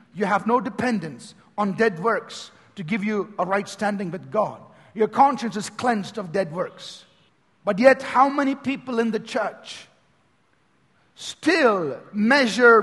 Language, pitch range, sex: English, 195-245 Hz, male